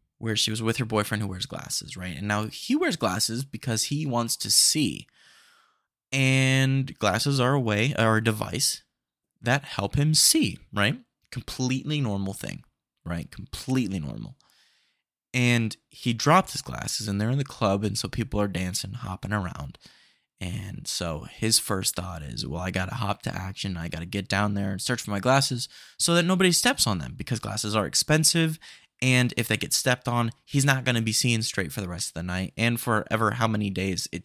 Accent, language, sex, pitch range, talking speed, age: American, English, male, 100-135 Hz, 200 wpm, 20-39